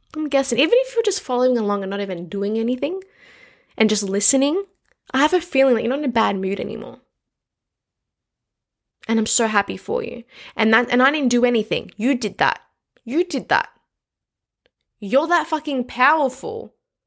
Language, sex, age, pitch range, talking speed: English, female, 20-39, 200-275 Hz, 180 wpm